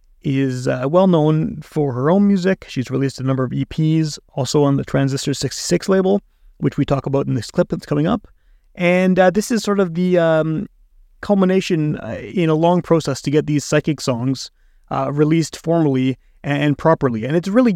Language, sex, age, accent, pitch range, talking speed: English, male, 30-49, American, 135-160 Hz, 195 wpm